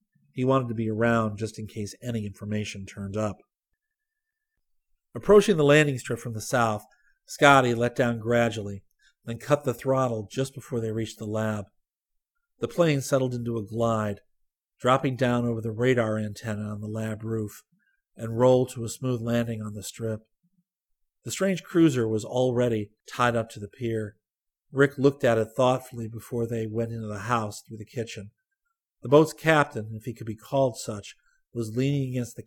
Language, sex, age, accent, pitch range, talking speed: English, male, 50-69, American, 110-135 Hz, 175 wpm